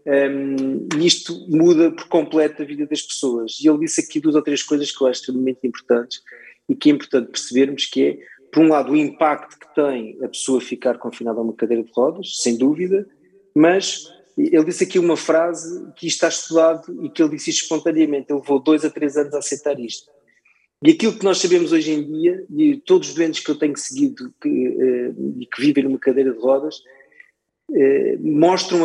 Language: Portuguese